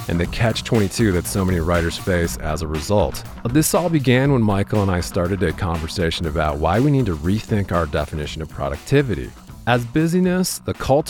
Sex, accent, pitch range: male, American, 85-105 Hz